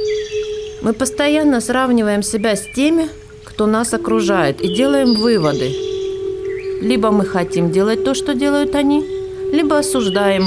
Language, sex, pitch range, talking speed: Russian, female, 175-270 Hz, 125 wpm